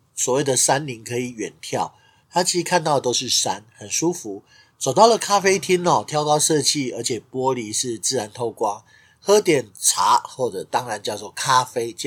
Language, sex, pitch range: Chinese, male, 125-170 Hz